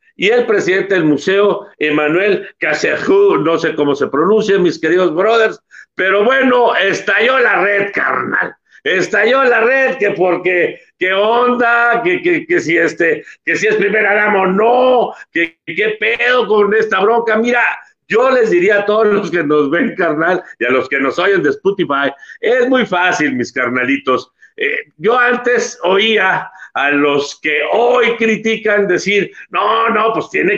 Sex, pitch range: male, 185-250 Hz